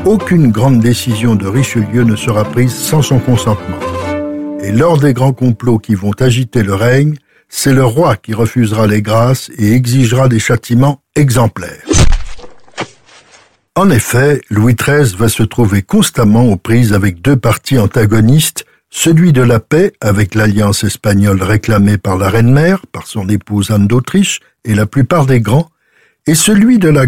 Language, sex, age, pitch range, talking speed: French, male, 60-79, 110-145 Hz, 160 wpm